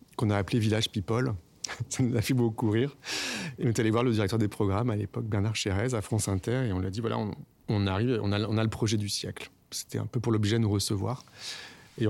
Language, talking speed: French, 260 wpm